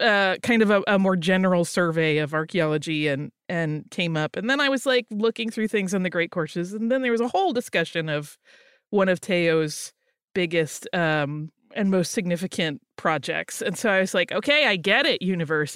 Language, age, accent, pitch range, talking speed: English, 30-49, American, 180-255 Hz, 200 wpm